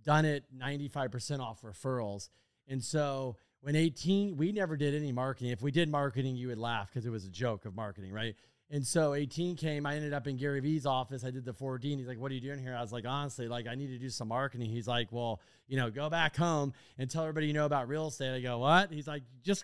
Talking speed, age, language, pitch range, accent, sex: 255 wpm, 30-49, English, 125-150 Hz, American, male